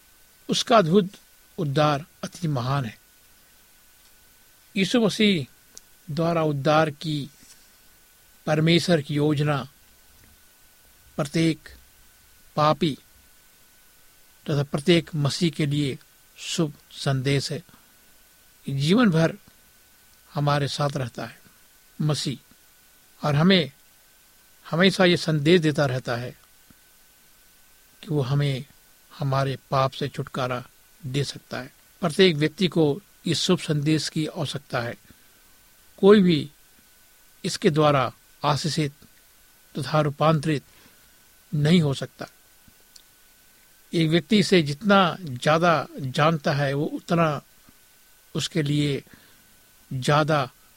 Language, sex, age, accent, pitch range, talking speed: Hindi, male, 60-79, native, 140-165 Hz, 95 wpm